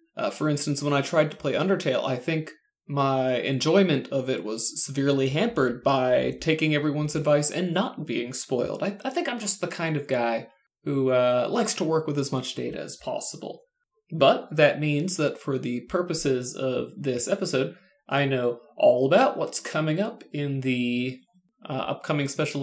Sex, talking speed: male, 180 wpm